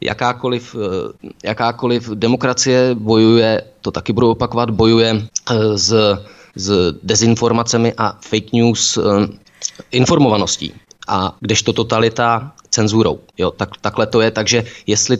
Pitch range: 105-120 Hz